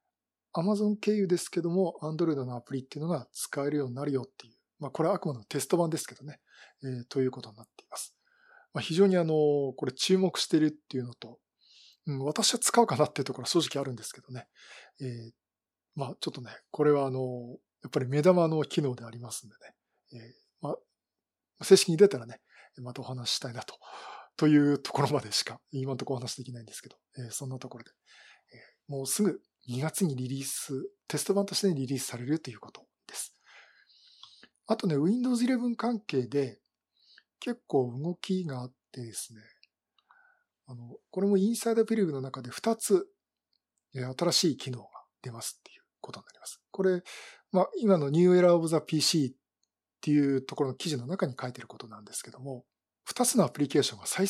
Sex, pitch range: male, 130-185 Hz